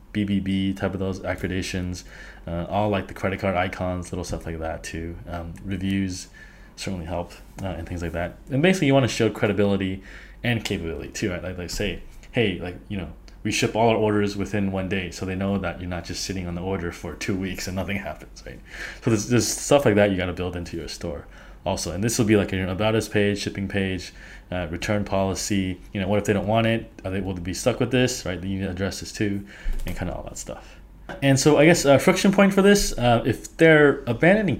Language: English